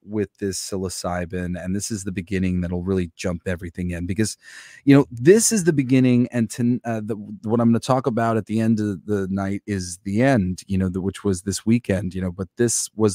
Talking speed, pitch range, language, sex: 225 wpm, 100-135 Hz, English, male